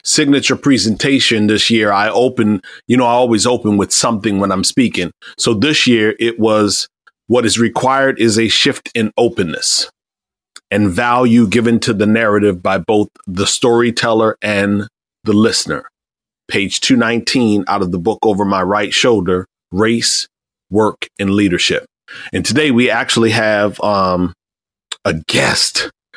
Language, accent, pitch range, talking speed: English, American, 105-120 Hz, 145 wpm